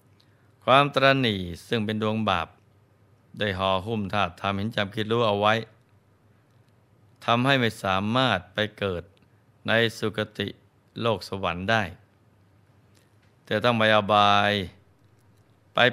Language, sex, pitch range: Thai, male, 100-115 Hz